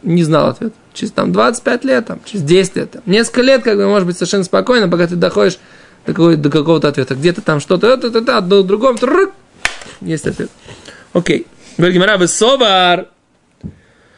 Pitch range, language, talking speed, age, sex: 170-220 Hz, Russian, 165 wpm, 20-39, male